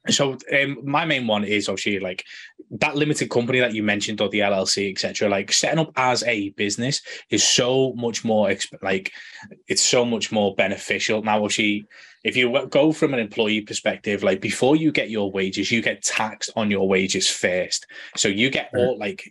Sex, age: male, 20-39